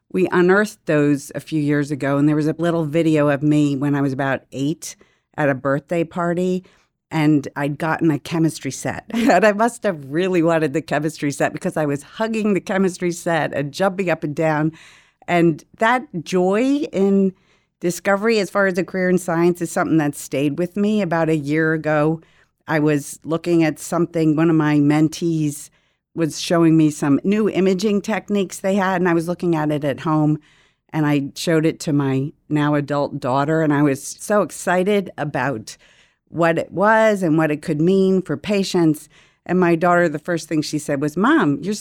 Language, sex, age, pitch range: English, female, 50-69, 145-180 Hz